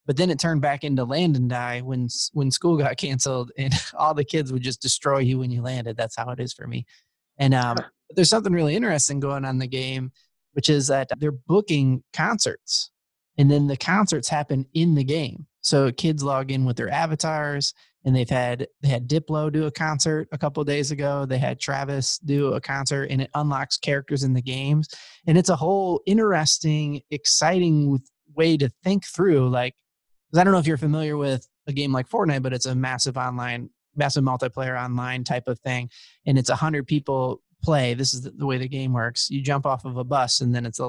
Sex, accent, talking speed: male, American, 210 wpm